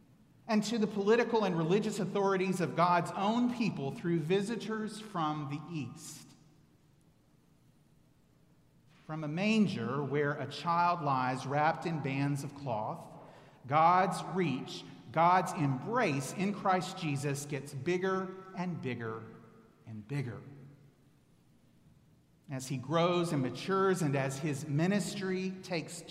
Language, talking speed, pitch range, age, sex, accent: English, 115 wpm, 140-185 Hz, 40-59, male, American